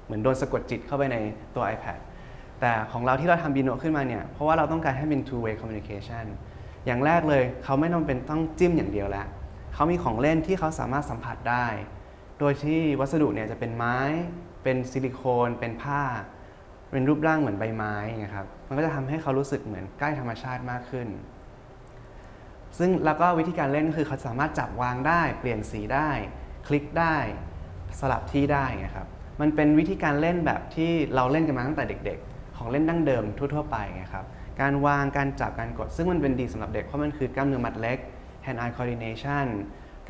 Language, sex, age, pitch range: Thai, male, 20-39, 110-145 Hz